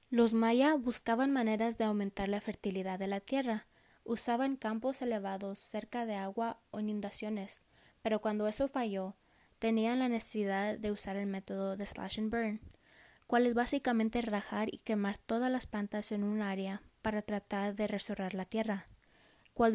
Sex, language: female, English